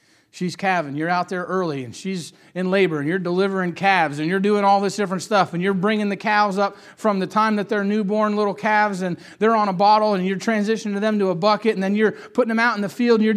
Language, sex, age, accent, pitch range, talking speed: English, male, 40-59, American, 170-225 Hz, 260 wpm